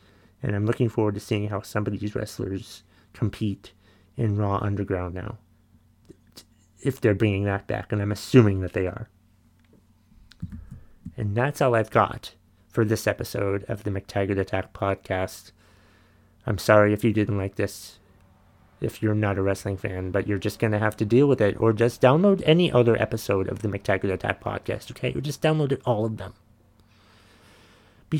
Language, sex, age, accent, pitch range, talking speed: English, male, 30-49, American, 100-110 Hz, 175 wpm